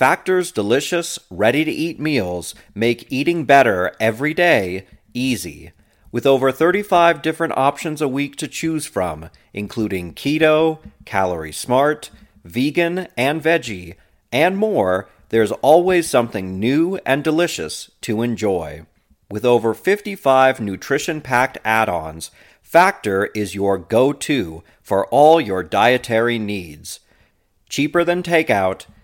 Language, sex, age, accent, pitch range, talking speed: English, male, 40-59, American, 105-155 Hz, 110 wpm